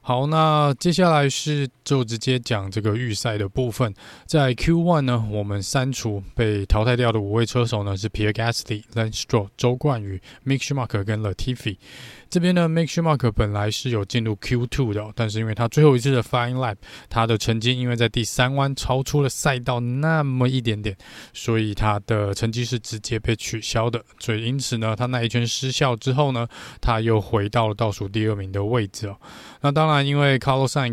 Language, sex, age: Chinese, male, 20-39